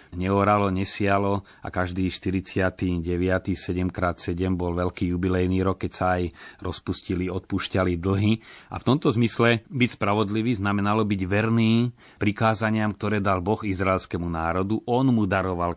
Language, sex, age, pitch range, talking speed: Slovak, male, 30-49, 90-105 Hz, 130 wpm